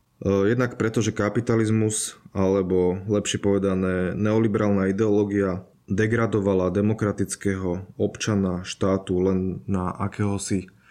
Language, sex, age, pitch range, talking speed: Slovak, male, 20-39, 95-110 Hz, 90 wpm